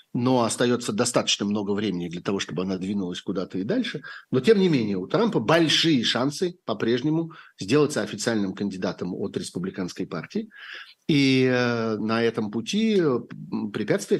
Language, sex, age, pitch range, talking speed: Russian, male, 50-69, 100-140 Hz, 140 wpm